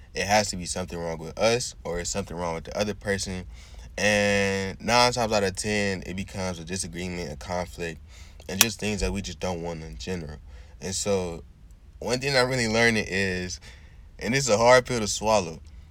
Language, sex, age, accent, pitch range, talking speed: English, male, 20-39, American, 80-100 Hz, 200 wpm